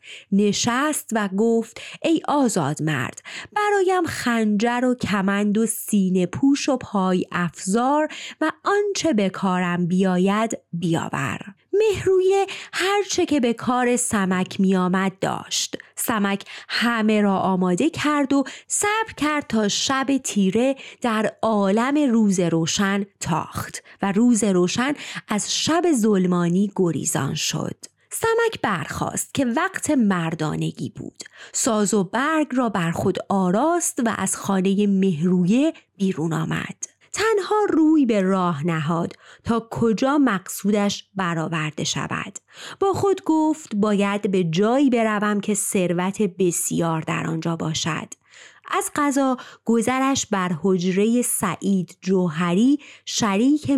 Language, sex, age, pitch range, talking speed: Persian, female, 30-49, 185-270 Hz, 115 wpm